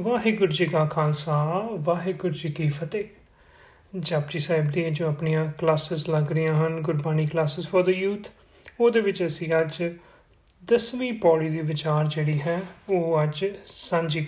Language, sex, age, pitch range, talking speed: Punjabi, male, 30-49, 165-215 Hz, 145 wpm